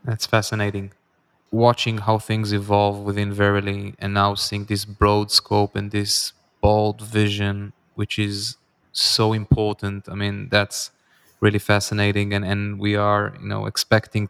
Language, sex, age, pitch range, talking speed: English, male, 20-39, 100-110 Hz, 145 wpm